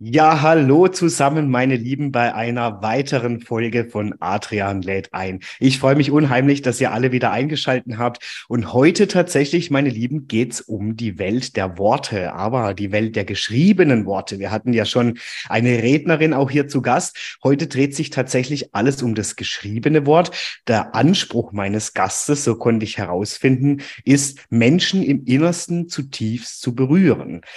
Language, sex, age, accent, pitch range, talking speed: German, male, 30-49, German, 115-140 Hz, 165 wpm